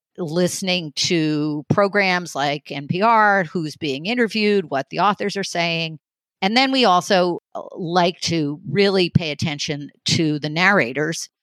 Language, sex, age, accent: English, female, 50-69, American